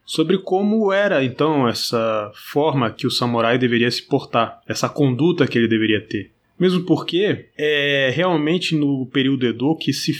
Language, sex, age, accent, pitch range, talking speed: Portuguese, male, 20-39, Brazilian, 120-155 Hz, 160 wpm